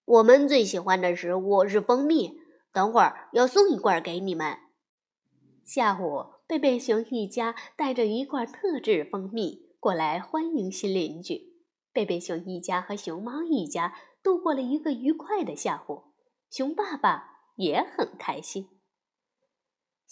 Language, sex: Chinese, female